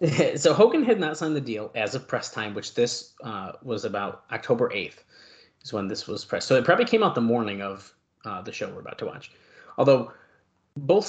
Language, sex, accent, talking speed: English, male, American, 215 wpm